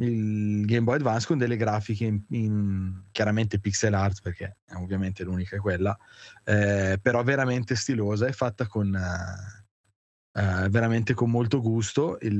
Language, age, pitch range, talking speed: Italian, 20-39, 100-120 Hz, 155 wpm